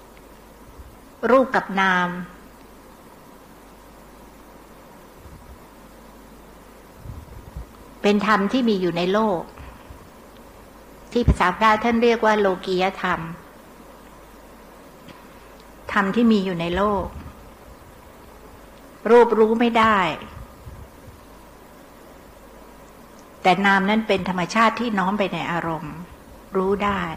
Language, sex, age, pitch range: Thai, female, 60-79, 180-225 Hz